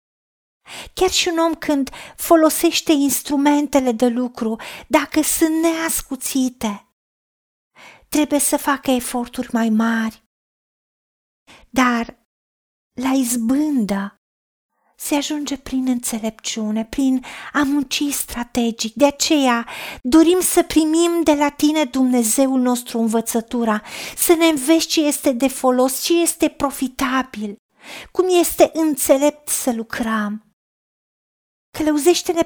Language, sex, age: Romanian, female, 40-59